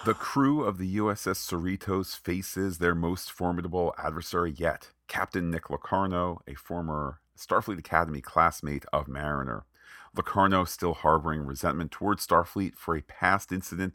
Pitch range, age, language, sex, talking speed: 75-90 Hz, 40-59, English, male, 140 wpm